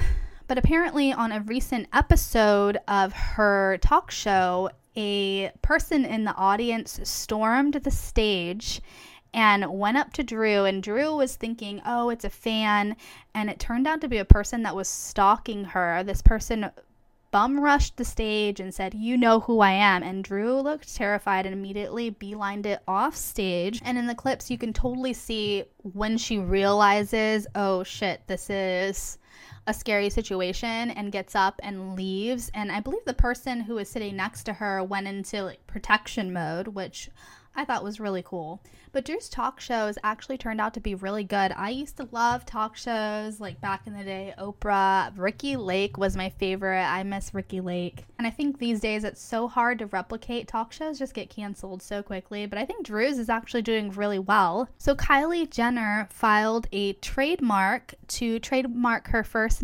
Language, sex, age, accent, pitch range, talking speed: English, female, 10-29, American, 195-235 Hz, 180 wpm